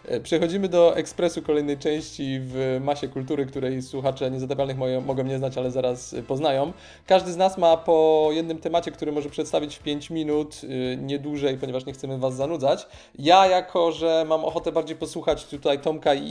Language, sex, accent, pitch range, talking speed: Polish, male, native, 130-155 Hz, 175 wpm